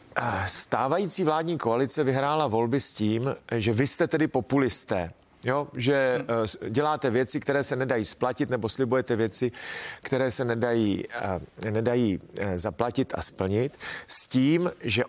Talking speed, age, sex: 125 wpm, 40-59, male